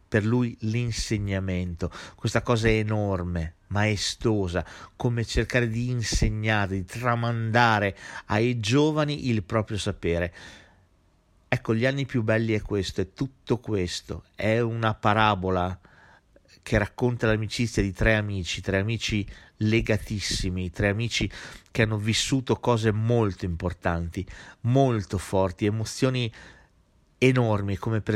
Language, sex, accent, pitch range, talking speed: Italian, male, native, 90-110 Hz, 115 wpm